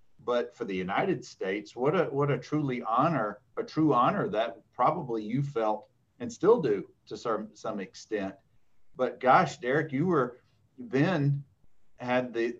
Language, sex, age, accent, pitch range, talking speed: English, male, 40-59, American, 110-140 Hz, 155 wpm